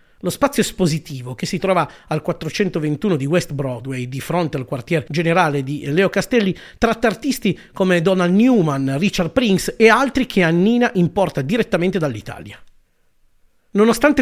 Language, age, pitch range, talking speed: Italian, 40-59, 155-215 Hz, 145 wpm